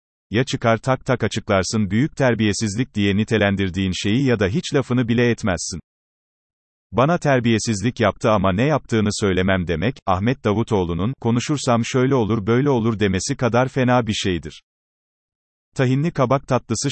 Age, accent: 40-59, native